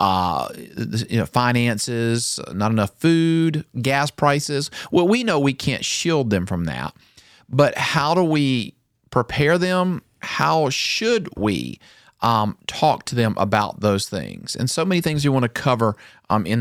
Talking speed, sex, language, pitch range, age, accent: 160 wpm, male, English, 105-125 Hz, 40-59, American